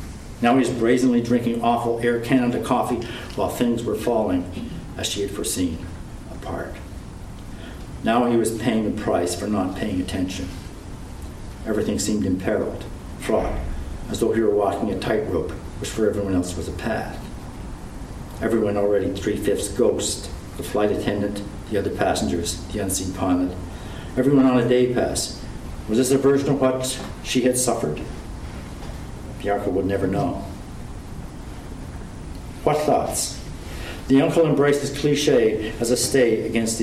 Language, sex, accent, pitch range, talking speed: English, male, American, 95-125 Hz, 145 wpm